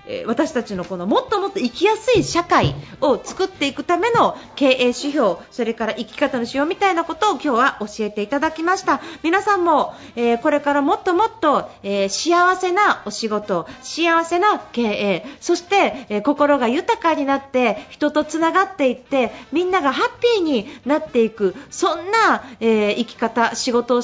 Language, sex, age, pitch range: Japanese, female, 40-59, 225-330 Hz